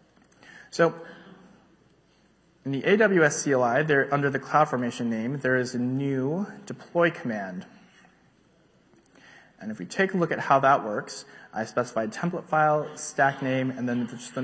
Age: 30-49